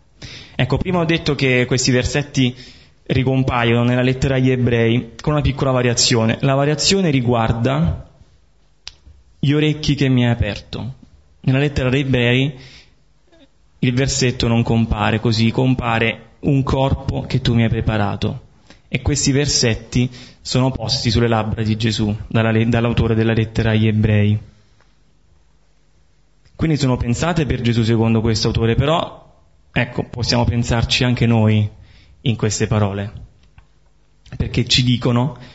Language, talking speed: Italian, 130 wpm